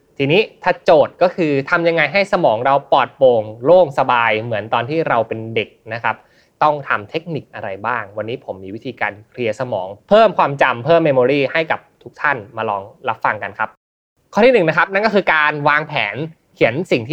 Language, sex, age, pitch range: Thai, male, 20-39, 125-165 Hz